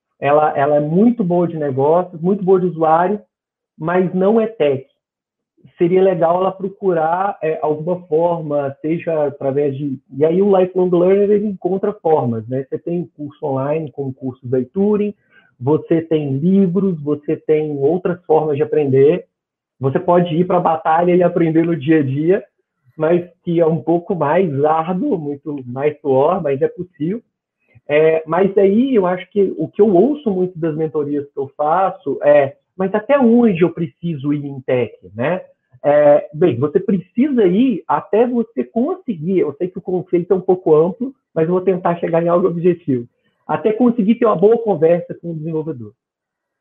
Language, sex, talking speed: Portuguese, male, 175 wpm